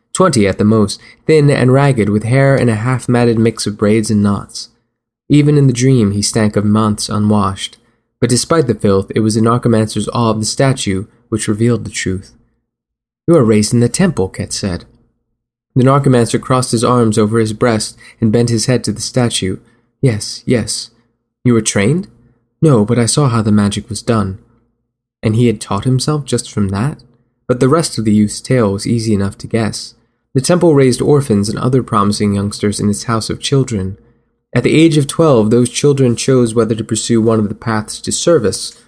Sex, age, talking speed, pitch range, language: male, 20-39, 200 wpm, 105-125 Hz, English